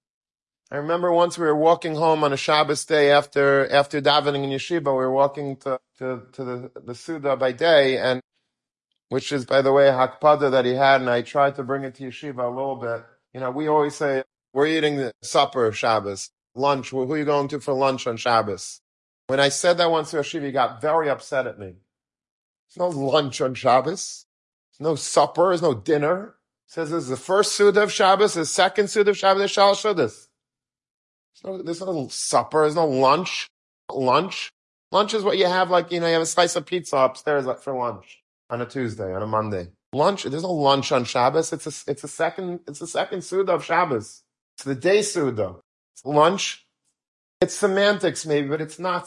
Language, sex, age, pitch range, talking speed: English, male, 40-59, 130-170 Hz, 210 wpm